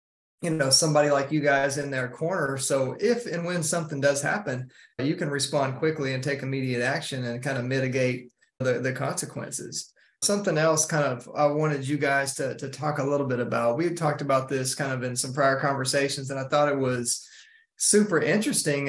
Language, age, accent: English, 30-49, American